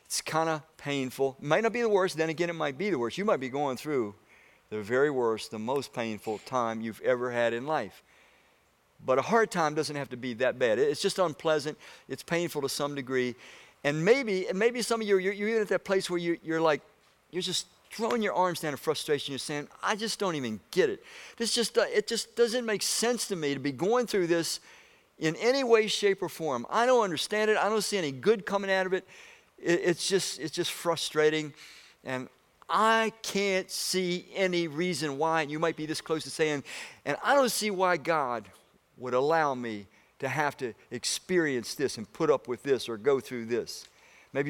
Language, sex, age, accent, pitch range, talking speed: English, male, 50-69, American, 135-195 Hz, 215 wpm